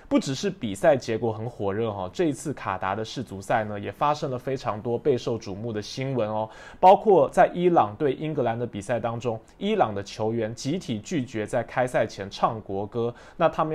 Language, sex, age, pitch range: Chinese, male, 20-39, 110-145 Hz